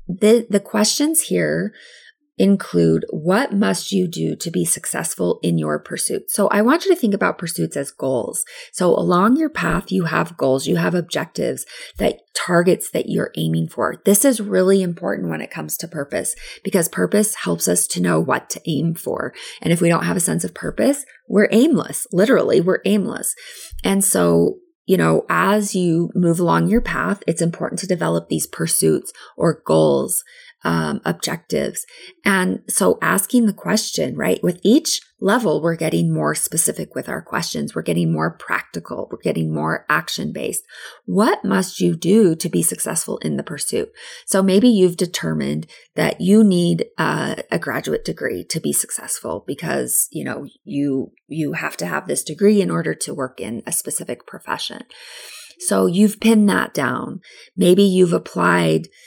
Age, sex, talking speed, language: 20-39, female, 170 wpm, English